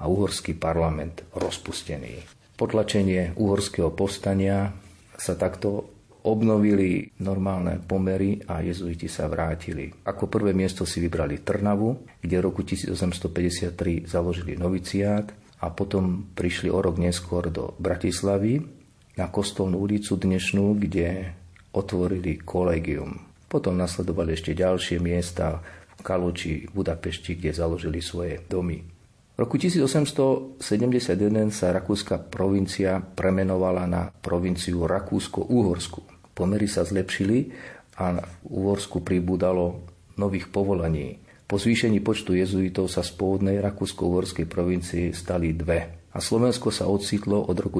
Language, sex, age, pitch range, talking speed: Slovak, male, 40-59, 85-100 Hz, 115 wpm